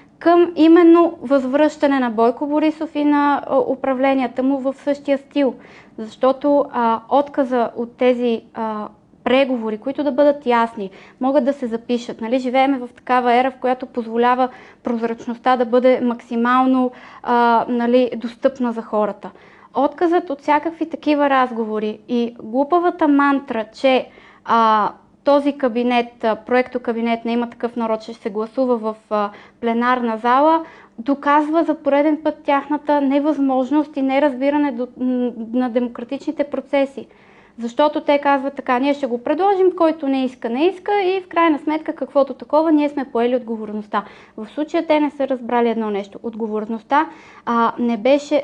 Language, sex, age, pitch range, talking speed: Bulgarian, female, 20-39, 235-285 Hz, 140 wpm